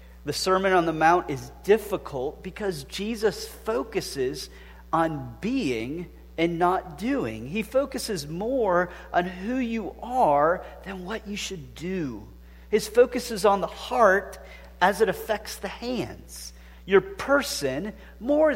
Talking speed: 135 wpm